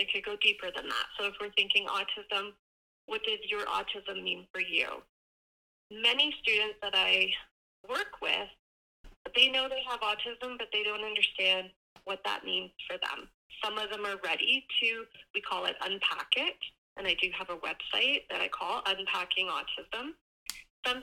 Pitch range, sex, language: 190-250 Hz, female, English